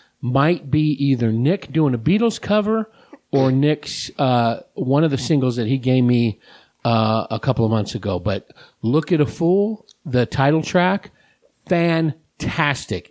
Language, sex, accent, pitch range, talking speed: English, male, American, 115-150 Hz, 155 wpm